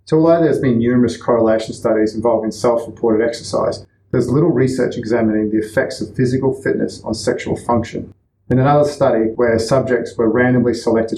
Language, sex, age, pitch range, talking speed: English, male, 30-49, 110-125 Hz, 160 wpm